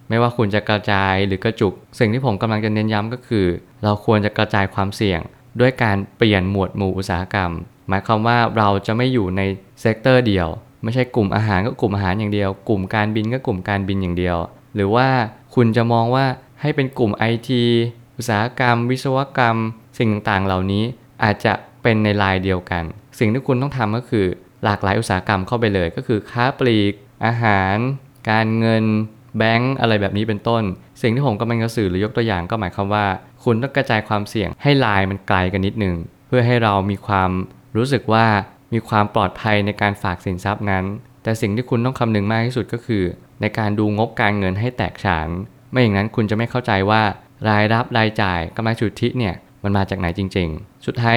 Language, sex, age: Thai, male, 20-39